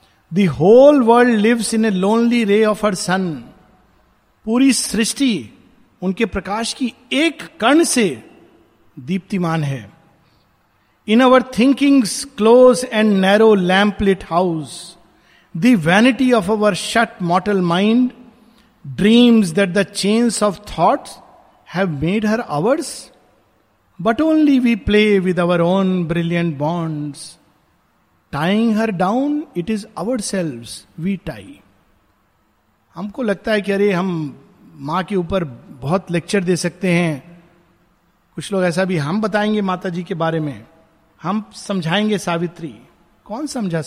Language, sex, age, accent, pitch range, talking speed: Hindi, male, 50-69, native, 165-225 Hz, 125 wpm